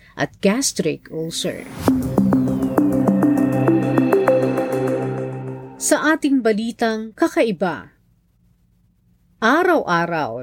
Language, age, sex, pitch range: Filipino, 40-59, female, 160-235 Hz